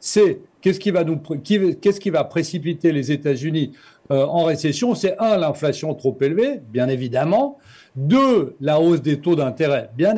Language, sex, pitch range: French, male, 160-225 Hz